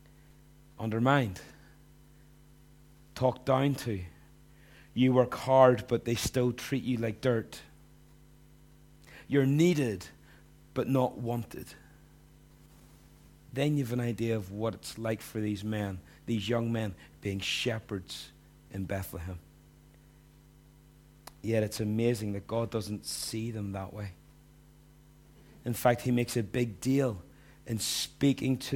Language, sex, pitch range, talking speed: English, male, 110-140 Hz, 120 wpm